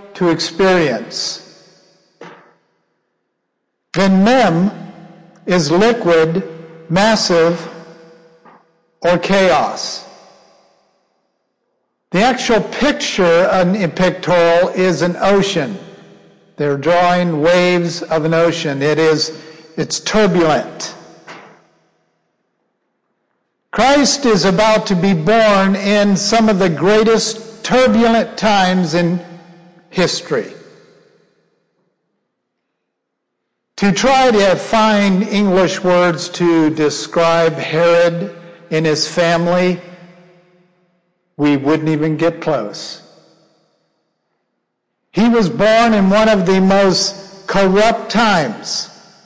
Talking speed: 85 wpm